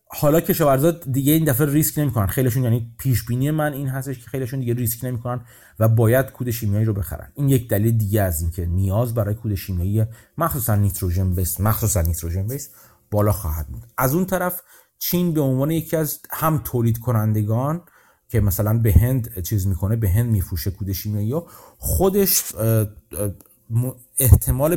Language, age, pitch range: Persian, 30-49, 100-130 Hz